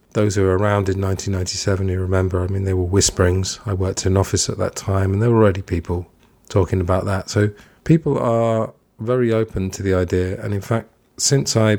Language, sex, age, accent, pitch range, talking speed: English, male, 40-59, British, 95-115 Hz, 215 wpm